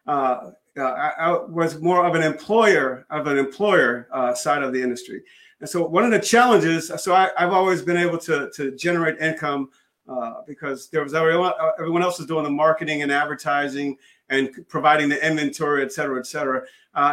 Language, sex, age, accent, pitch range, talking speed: English, male, 40-59, American, 155-190 Hz, 190 wpm